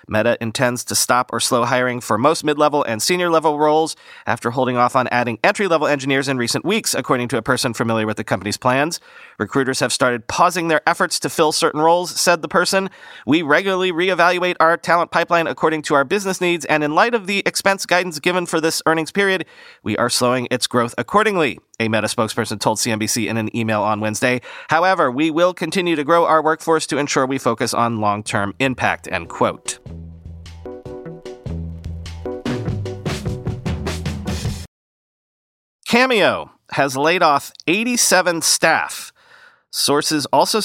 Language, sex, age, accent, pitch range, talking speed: English, male, 30-49, American, 120-175 Hz, 165 wpm